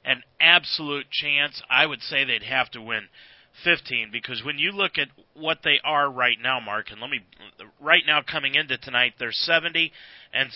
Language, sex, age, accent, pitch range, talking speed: English, male, 40-59, American, 125-155 Hz, 190 wpm